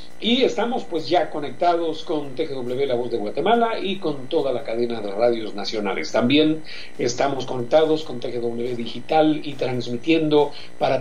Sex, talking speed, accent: male, 155 wpm, Mexican